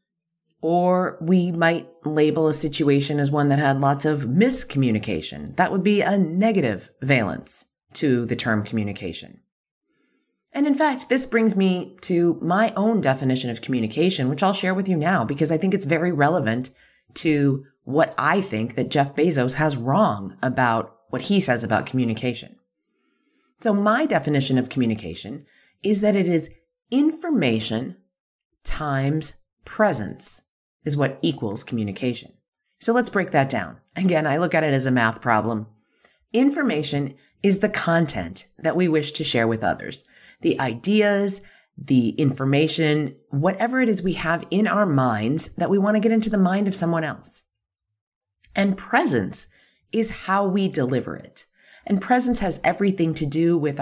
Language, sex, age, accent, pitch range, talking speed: English, female, 30-49, American, 130-190 Hz, 155 wpm